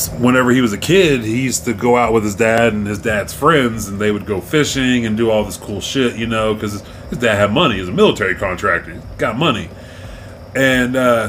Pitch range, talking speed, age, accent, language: 105-125 Hz, 240 wpm, 30-49, American, English